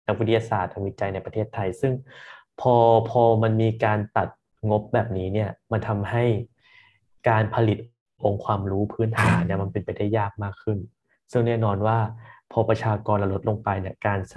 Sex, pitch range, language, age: male, 100-120 Hz, Thai, 20-39